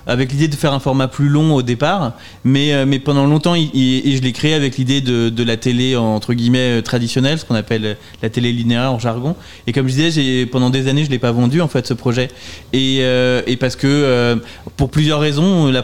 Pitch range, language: 120-140 Hz, French